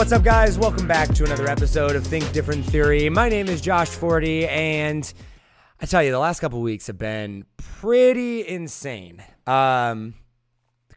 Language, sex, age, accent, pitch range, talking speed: English, male, 30-49, American, 135-170 Hz, 170 wpm